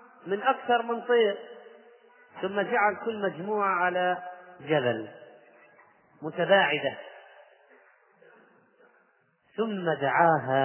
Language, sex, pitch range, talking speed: Arabic, male, 150-190 Hz, 75 wpm